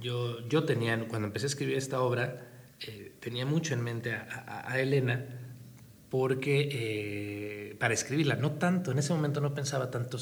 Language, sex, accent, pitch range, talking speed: Spanish, male, Mexican, 110-135 Hz, 175 wpm